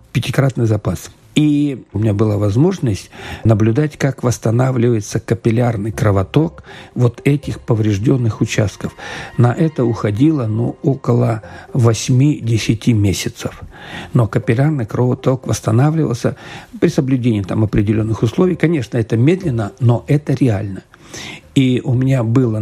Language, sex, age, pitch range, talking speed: Russian, male, 50-69, 110-135 Hz, 110 wpm